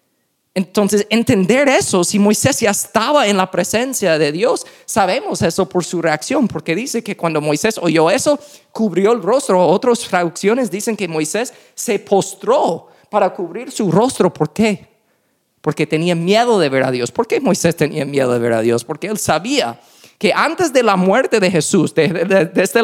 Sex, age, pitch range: male, 30-49, 160-225 Hz